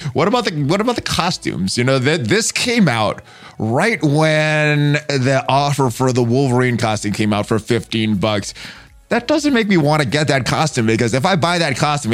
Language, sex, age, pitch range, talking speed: English, male, 20-39, 120-160 Hz, 205 wpm